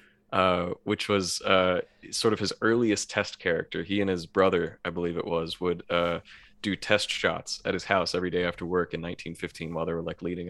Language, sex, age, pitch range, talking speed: English, male, 30-49, 90-105 Hz, 210 wpm